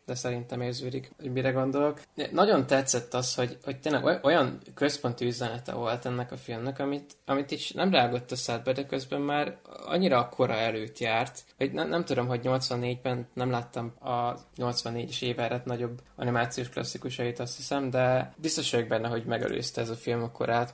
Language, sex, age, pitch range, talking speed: Hungarian, male, 20-39, 120-135 Hz, 175 wpm